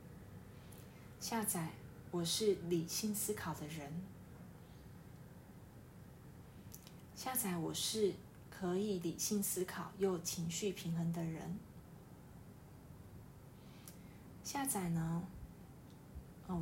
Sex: female